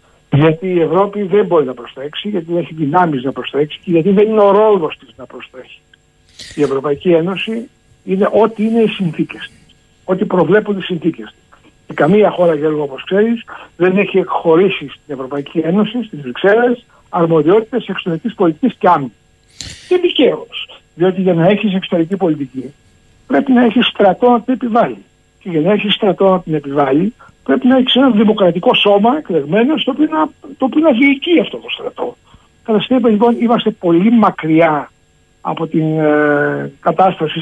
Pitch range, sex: 155-205 Hz, male